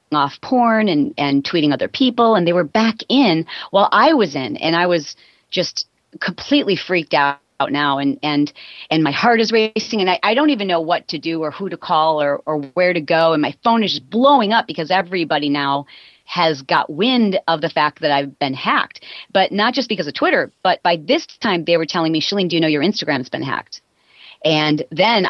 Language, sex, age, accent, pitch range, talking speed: English, female, 30-49, American, 155-210 Hz, 225 wpm